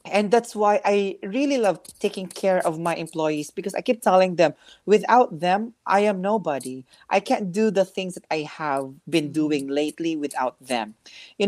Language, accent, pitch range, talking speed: Filipino, native, 165-210 Hz, 185 wpm